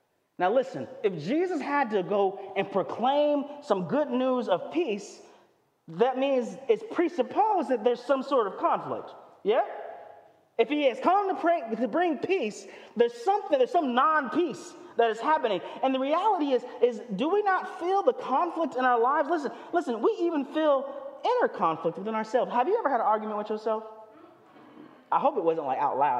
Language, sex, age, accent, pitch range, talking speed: English, male, 30-49, American, 220-345 Hz, 185 wpm